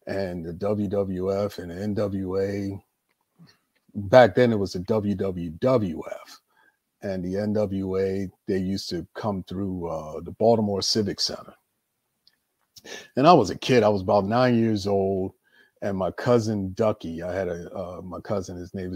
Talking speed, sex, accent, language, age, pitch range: 150 wpm, male, American, English, 40-59, 95-115 Hz